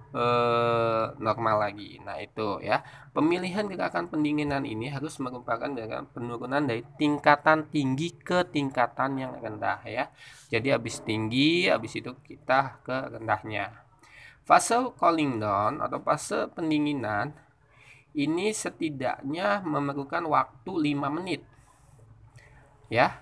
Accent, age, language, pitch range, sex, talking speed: native, 20-39, Indonesian, 115-150 Hz, male, 110 wpm